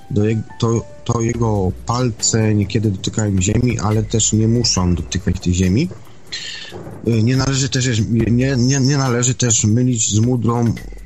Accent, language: native, Polish